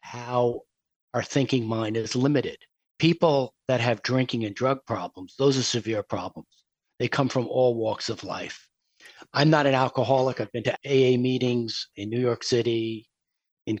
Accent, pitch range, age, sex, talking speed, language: American, 115-135 Hz, 50-69, male, 165 wpm, English